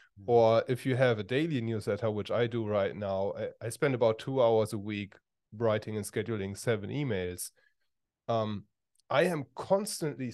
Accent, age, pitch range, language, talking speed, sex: German, 30-49, 105-130 Hz, English, 160 wpm, male